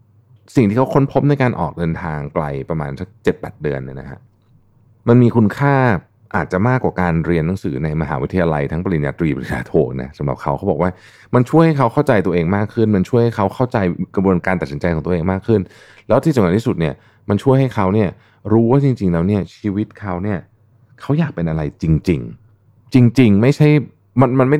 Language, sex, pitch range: Thai, male, 90-115 Hz